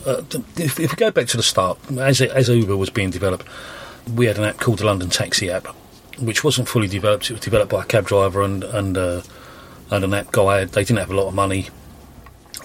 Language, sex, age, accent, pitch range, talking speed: English, male, 30-49, British, 95-120 Hz, 235 wpm